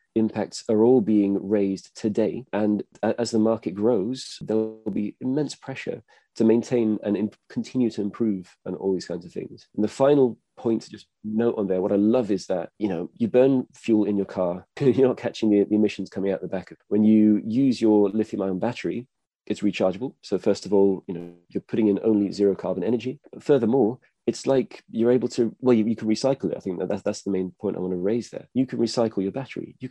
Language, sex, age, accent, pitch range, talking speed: English, male, 30-49, British, 100-120 Hz, 235 wpm